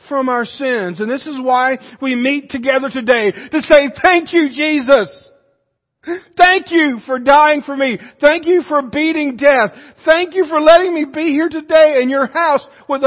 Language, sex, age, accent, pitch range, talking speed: English, male, 50-69, American, 210-280 Hz, 180 wpm